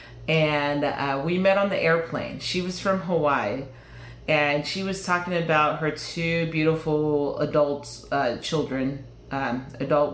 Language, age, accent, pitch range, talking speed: English, 30-49, American, 140-170 Hz, 140 wpm